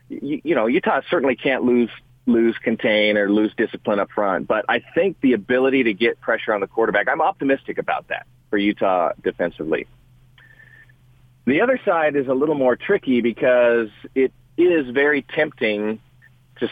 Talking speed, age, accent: 160 wpm, 40-59, American